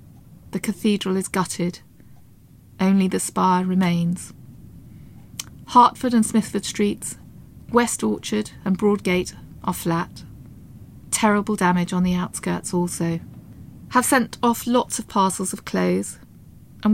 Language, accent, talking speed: English, British, 115 wpm